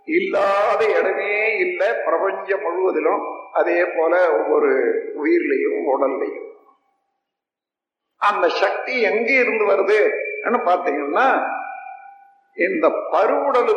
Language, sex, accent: Tamil, male, native